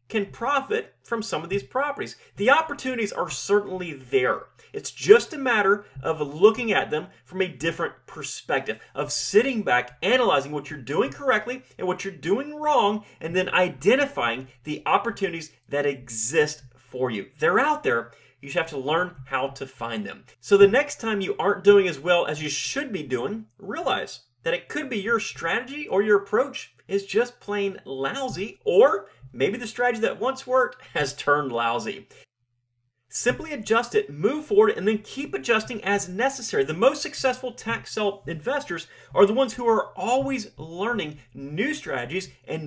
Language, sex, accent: English, male, American